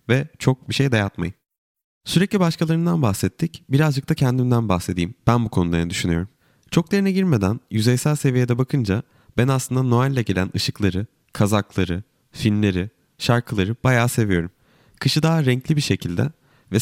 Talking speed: 135 wpm